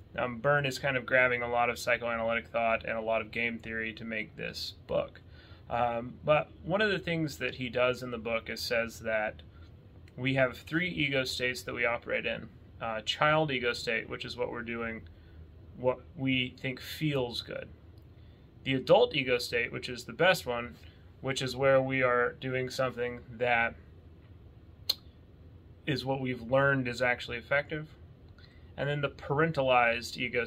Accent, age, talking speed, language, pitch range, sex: American, 30-49, 175 wpm, English, 110-130 Hz, male